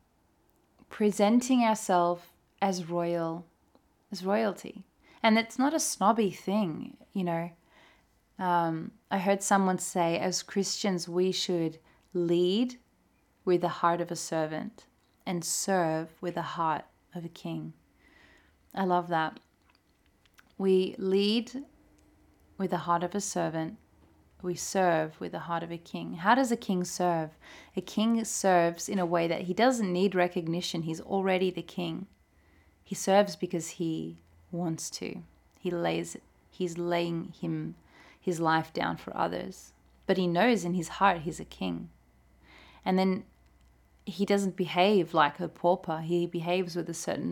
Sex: female